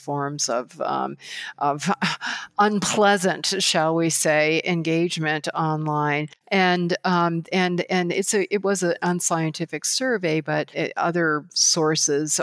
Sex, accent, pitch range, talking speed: female, American, 155-185 Hz, 120 wpm